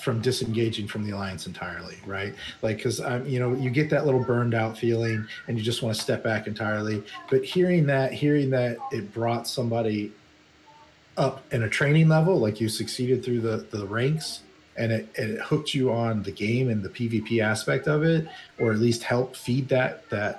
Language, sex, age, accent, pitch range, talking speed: English, male, 30-49, American, 105-135 Hz, 205 wpm